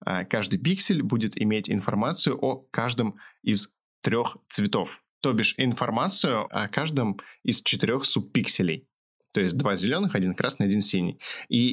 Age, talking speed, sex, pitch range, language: 20-39, 140 wpm, male, 95-120 Hz, Russian